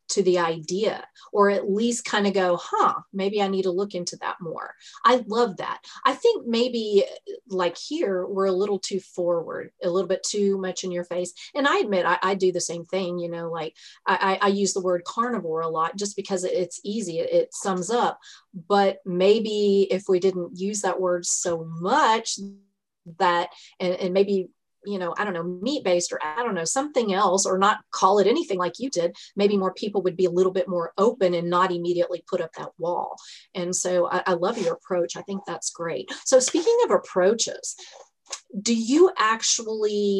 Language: English